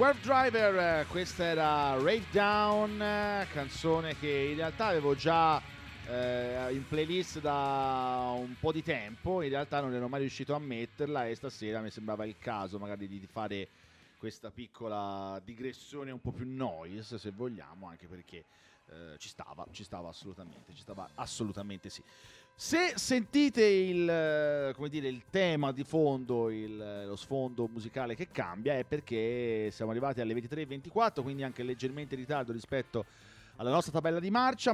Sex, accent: male, native